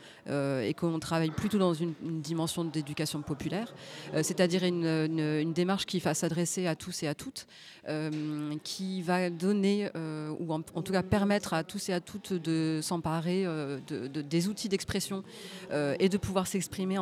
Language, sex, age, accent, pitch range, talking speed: French, female, 30-49, French, 160-190 Hz, 190 wpm